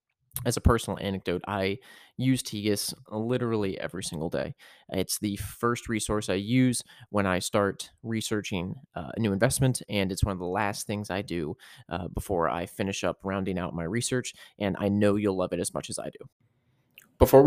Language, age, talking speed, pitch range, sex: English, 20-39, 190 wpm, 100-125 Hz, male